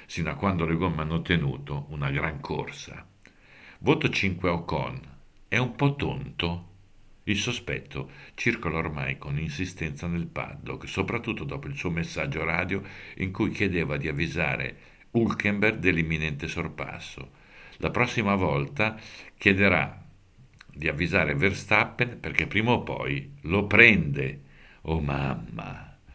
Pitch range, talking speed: 70-100 Hz, 125 wpm